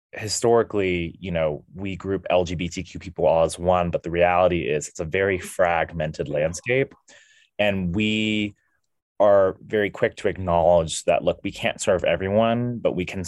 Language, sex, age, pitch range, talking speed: English, male, 20-39, 85-100 Hz, 160 wpm